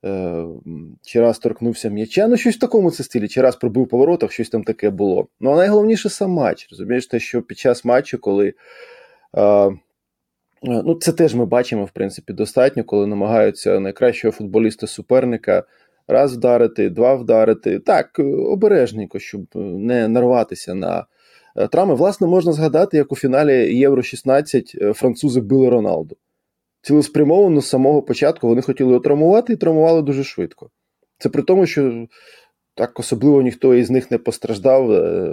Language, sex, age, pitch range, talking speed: Ukrainian, male, 20-39, 115-150 Hz, 145 wpm